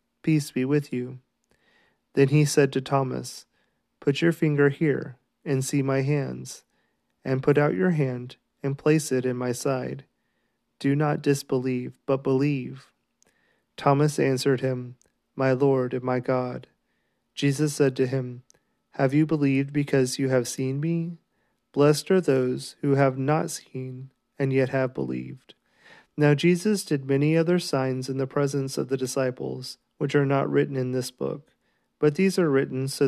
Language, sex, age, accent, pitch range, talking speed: English, male, 30-49, American, 130-145 Hz, 160 wpm